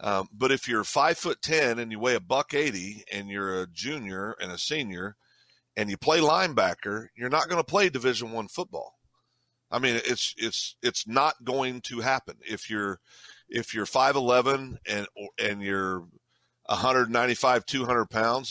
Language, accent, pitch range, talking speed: English, American, 105-135 Hz, 185 wpm